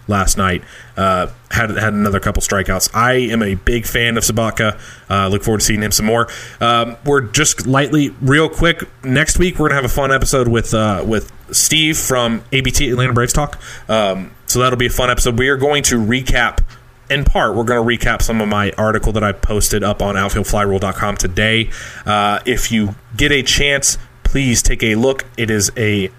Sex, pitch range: male, 105-125 Hz